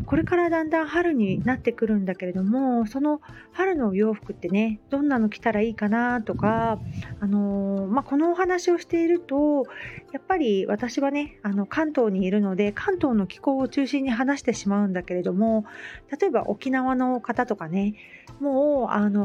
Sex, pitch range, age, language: female, 205-275 Hz, 40-59, Japanese